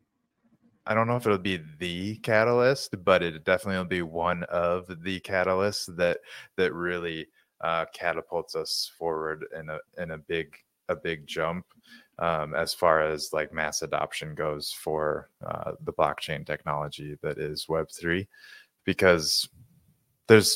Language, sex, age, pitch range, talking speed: English, male, 20-39, 80-105 Hz, 150 wpm